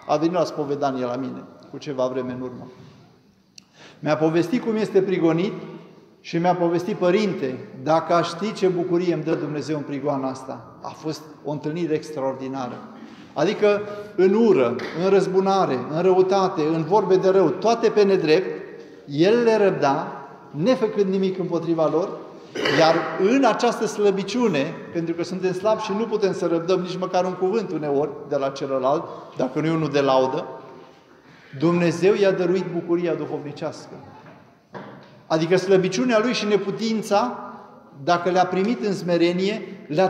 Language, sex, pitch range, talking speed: Romanian, male, 155-195 Hz, 150 wpm